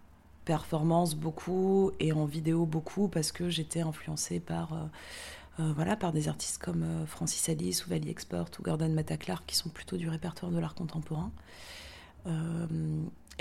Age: 30-49